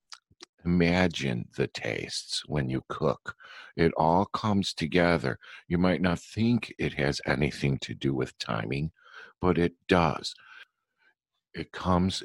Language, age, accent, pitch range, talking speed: English, 50-69, American, 75-95 Hz, 125 wpm